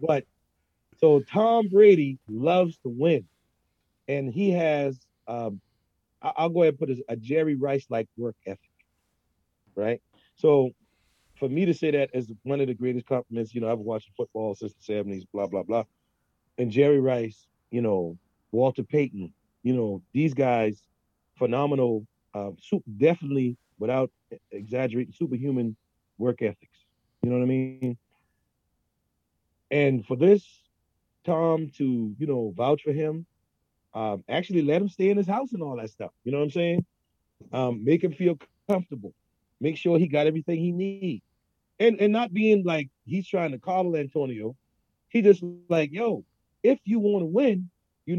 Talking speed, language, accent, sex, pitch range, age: 160 wpm, English, American, male, 110-165 Hz, 40-59